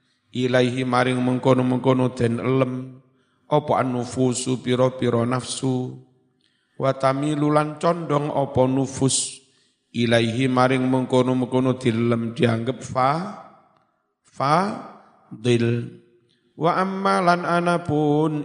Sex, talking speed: male, 80 wpm